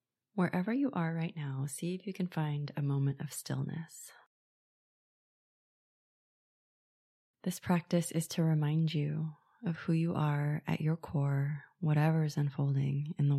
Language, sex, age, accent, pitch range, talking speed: English, female, 20-39, American, 150-175 Hz, 145 wpm